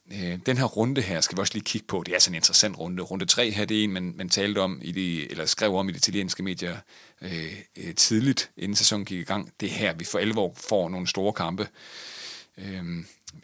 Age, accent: 30-49, native